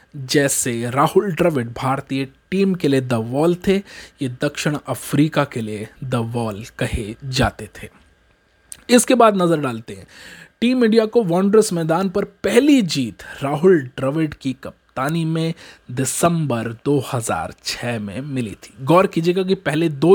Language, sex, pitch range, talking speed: Hindi, male, 125-170 Hz, 145 wpm